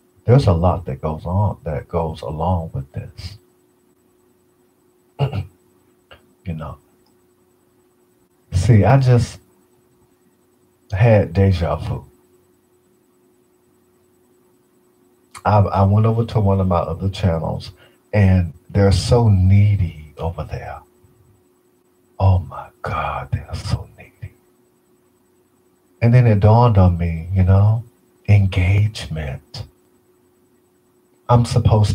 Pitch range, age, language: 90-125 Hz, 50-69, English